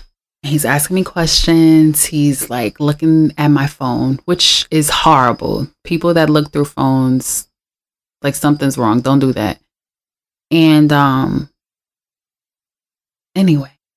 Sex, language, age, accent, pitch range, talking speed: female, English, 20-39, American, 140-160 Hz, 115 wpm